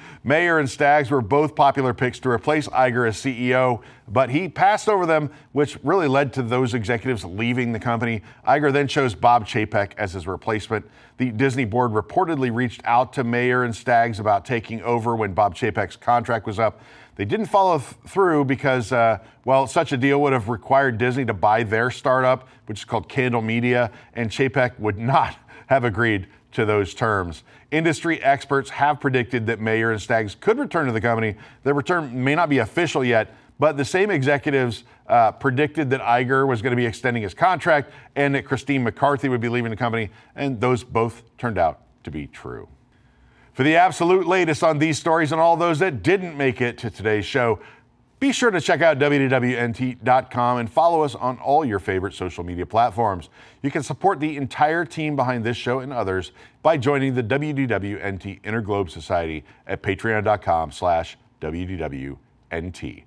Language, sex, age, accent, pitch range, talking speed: English, male, 40-59, American, 115-140 Hz, 180 wpm